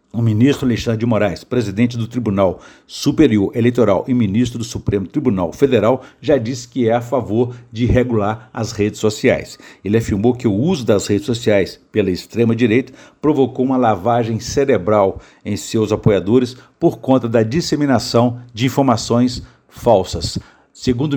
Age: 60-79